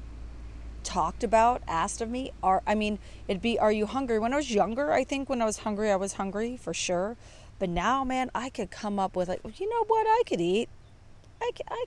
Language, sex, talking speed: English, female, 220 wpm